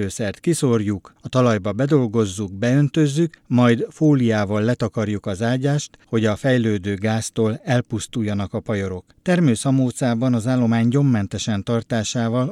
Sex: male